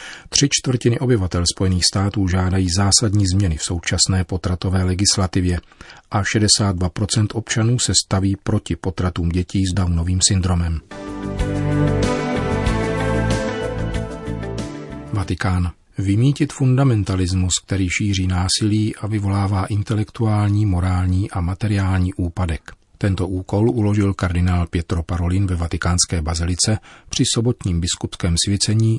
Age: 40-59